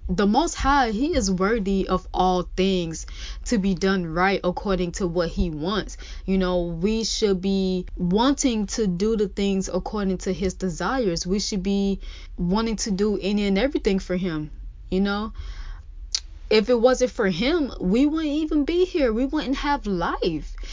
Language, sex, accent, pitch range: English, female, American, 190-235 Hz